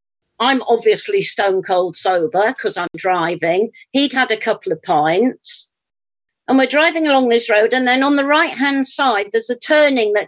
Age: 50-69